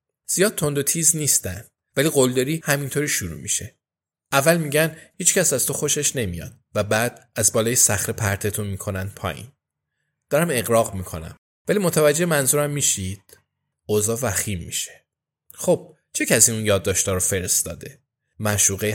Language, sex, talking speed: Persian, male, 145 wpm